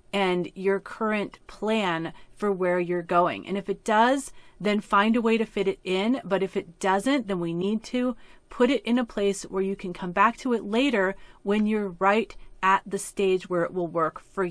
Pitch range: 185-230 Hz